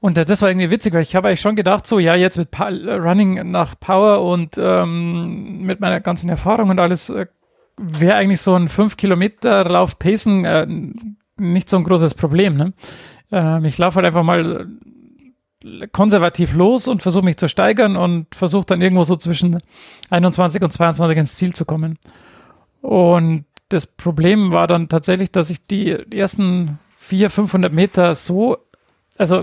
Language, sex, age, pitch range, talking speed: German, male, 40-59, 170-200 Hz, 170 wpm